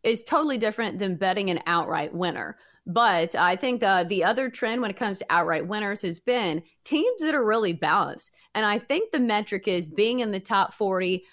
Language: English